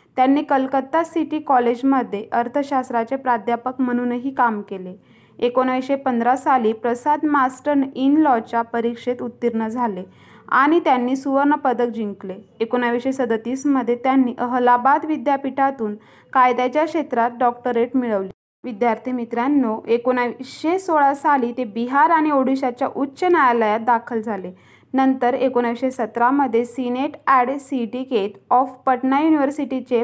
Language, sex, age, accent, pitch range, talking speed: Marathi, female, 20-39, native, 240-275 Hz, 110 wpm